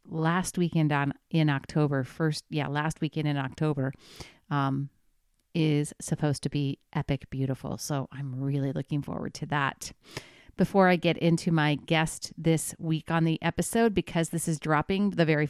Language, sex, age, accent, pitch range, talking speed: English, female, 40-59, American, 165-205 Hz, 165 wpm